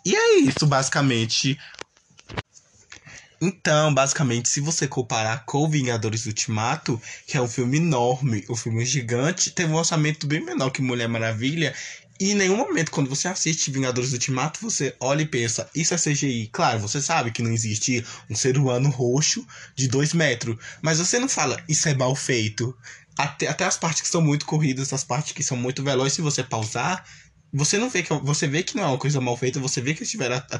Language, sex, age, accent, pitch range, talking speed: Portuguese, male, 20-39, Brazilian, 125-155 Hz, 195 wpm